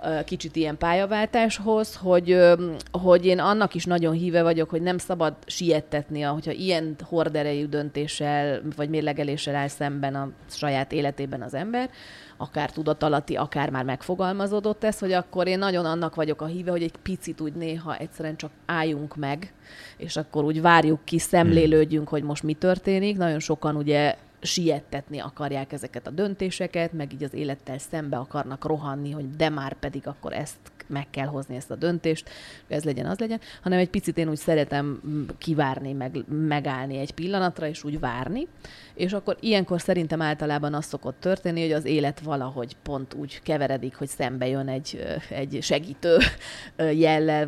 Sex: female